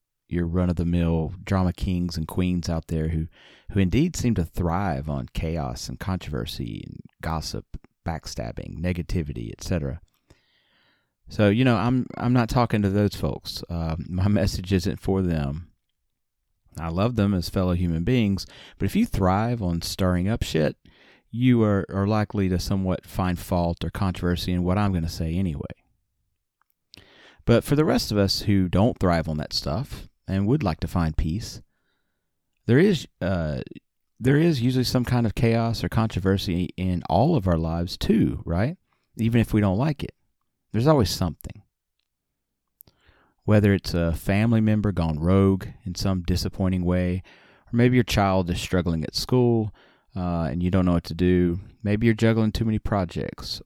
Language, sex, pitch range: English, male, 85-110 Hz